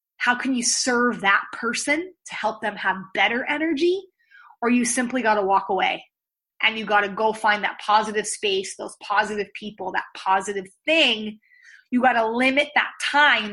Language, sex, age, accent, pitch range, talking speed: English, female, 20-39, American, 215-320 Hz, 180 wpm